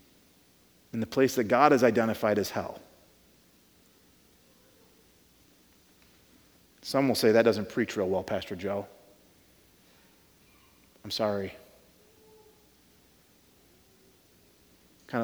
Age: 30-49